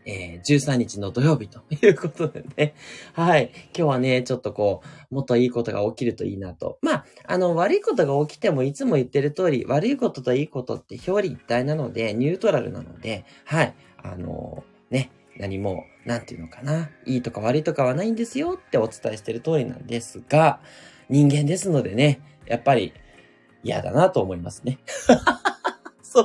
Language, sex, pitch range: Japanese, male, 120-190 Hz